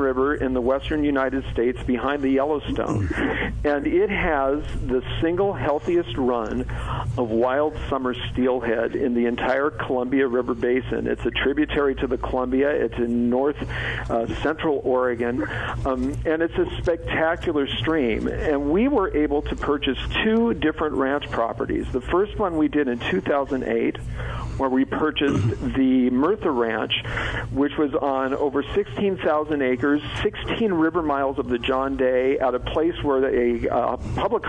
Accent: American